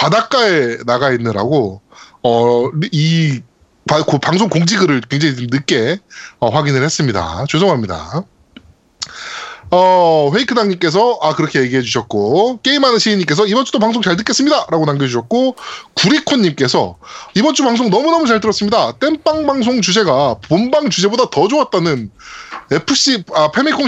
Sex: male